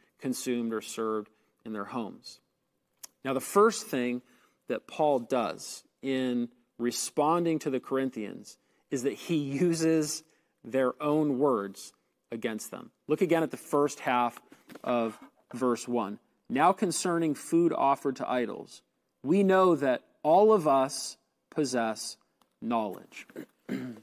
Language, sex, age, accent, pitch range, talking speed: English, male, 40-59, American, 125-170 Hz, 125 wpm